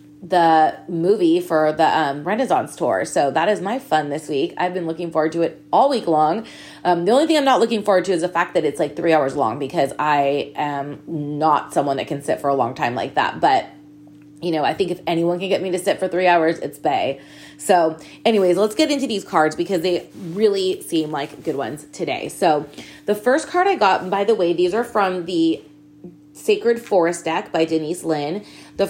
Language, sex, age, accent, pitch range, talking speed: English, female, 20-39, American, 155-205 Hz, 220 wpm